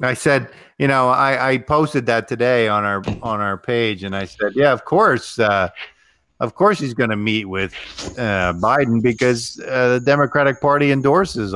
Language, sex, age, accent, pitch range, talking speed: English, male, 50-69, American, 100-130 Hz, 185 wpm